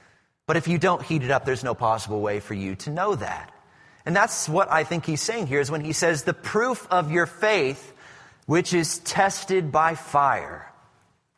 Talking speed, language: 200 wpm, English